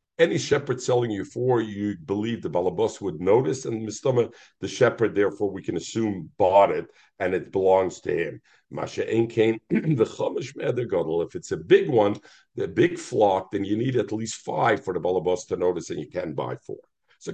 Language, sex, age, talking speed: English, male, 50-69, 185 wpm